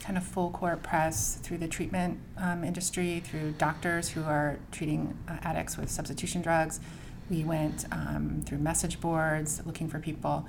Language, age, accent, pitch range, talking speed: English, 30-49, American, 145-170 Hz, 160 wpm